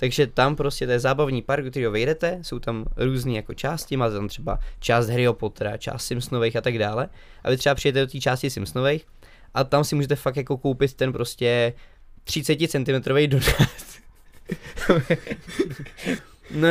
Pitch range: 115-135 Hz